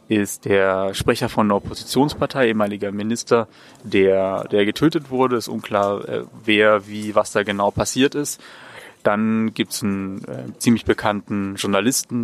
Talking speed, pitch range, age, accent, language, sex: 140 wpm, 100-120 Hz, 30-49, German, German, male